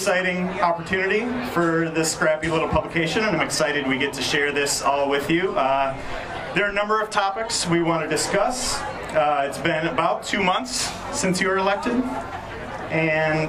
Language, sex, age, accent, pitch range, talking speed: English, male, 30-49, American, 140-180 Hz, 180 wpm